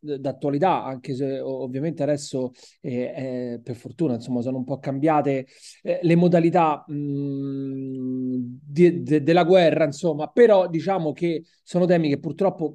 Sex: male